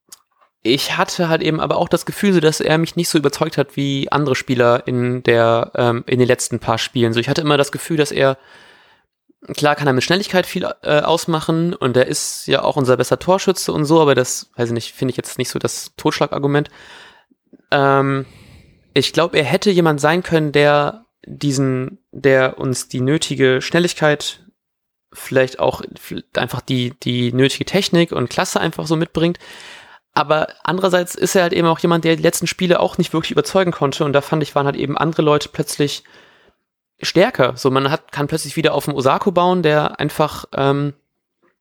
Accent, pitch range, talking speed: German, 135-165 Hz, 190 wpm